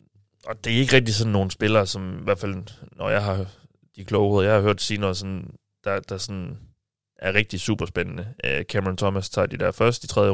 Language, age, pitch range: Danish, 30-49, 95-115 Hz